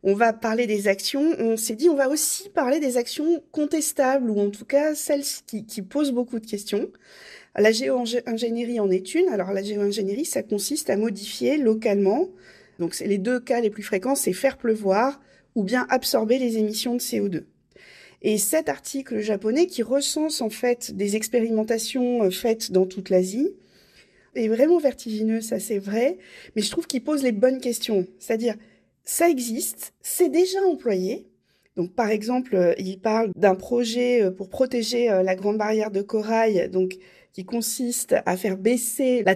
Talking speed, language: 170 wpm, French